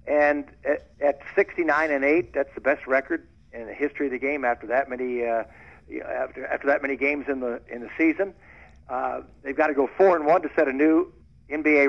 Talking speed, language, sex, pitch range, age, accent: 210 wpm, English, male, 120-150 Hz, 60-79, American